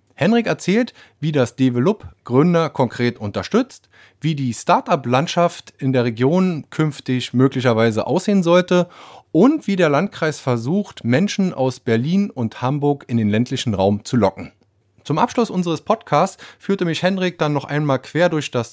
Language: German